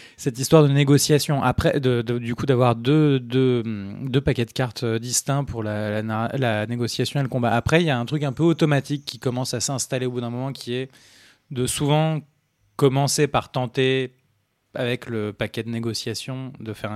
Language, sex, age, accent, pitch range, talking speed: French, male, 20-39, French, 120-145 Hz, 200 wpm